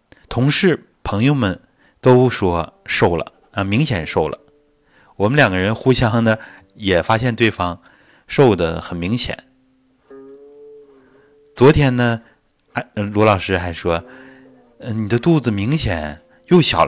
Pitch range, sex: 95-140 Hz, male